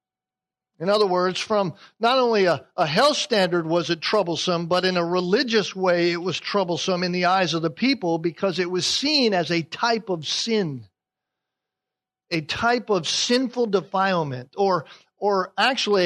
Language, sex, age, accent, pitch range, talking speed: English, male, 50-69, American, 170-220 Hz, 165 wpm